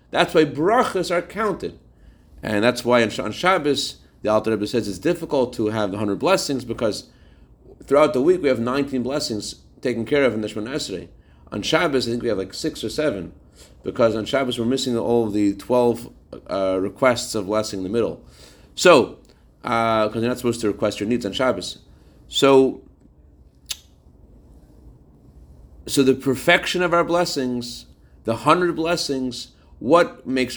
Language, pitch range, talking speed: English, 90-130 Hz, 165 wpm